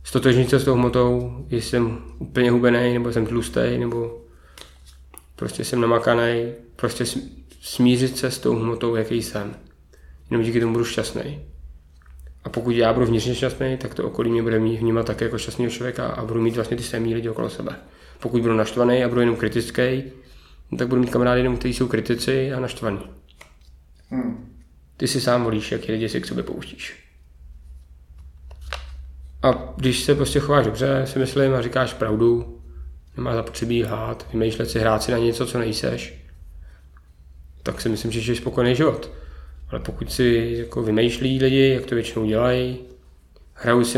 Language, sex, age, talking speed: Czech, male, 20-39, 165 wpm